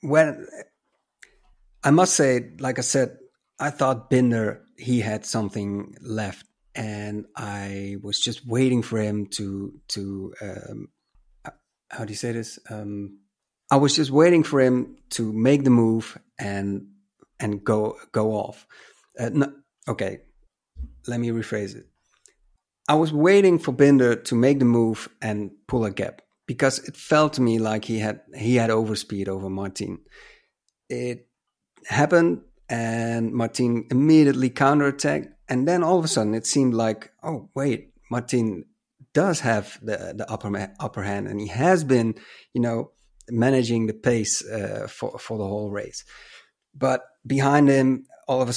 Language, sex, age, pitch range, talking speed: English, male, 50-69, 105-135 Hz, 155 wpm